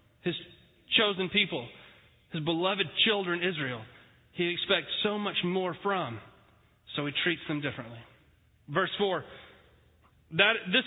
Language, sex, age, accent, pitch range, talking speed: English, male, 30-49, American, 145-200 Hz, 115 wpm